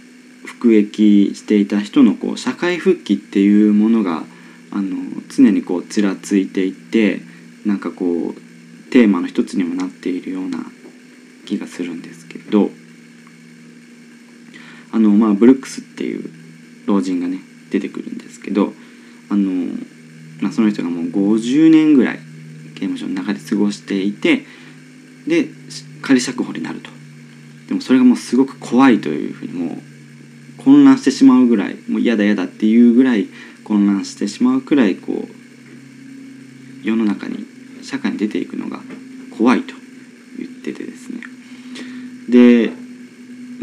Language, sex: Japanese, male